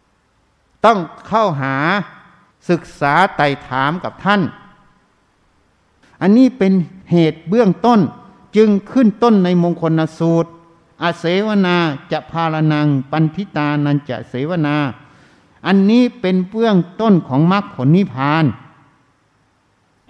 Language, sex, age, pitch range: Thai, male, 60-79, 140-195 Hz